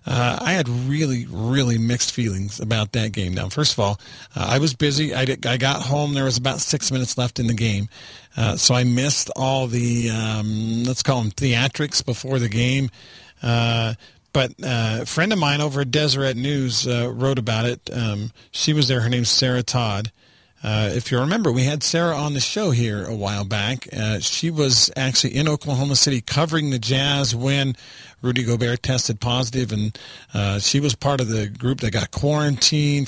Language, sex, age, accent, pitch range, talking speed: English, male, 40-59, American, 115-150 Hz, 200 wpm